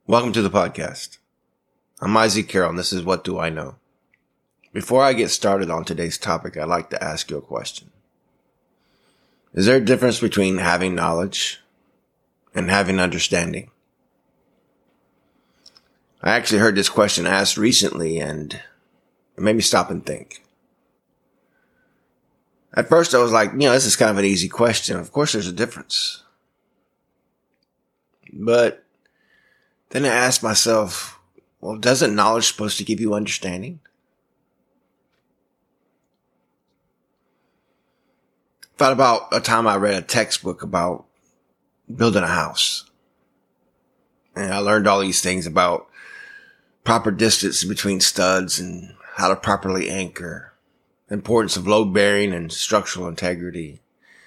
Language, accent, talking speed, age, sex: English, American, 135 wpm, 20-39, male